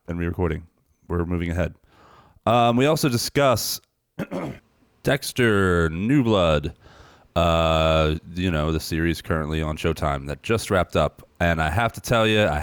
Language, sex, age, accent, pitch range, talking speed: English, male, 30-49, American, 80-100 Hz, 145 wpm